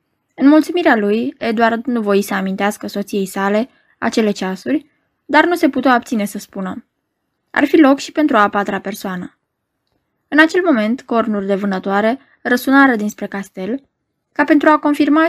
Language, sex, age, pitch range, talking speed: Romanian, female, 20-39, 205-285 Hz, 155 wpm